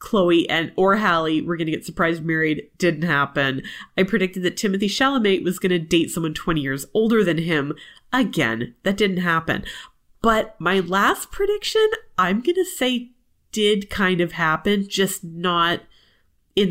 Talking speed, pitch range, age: 155 wpm, 160-205 Hz, 30-49